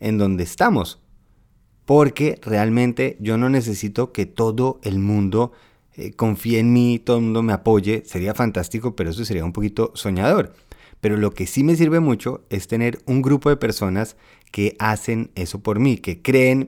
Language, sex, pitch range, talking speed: Spanish, male, 100-125 Hz, 175 wpm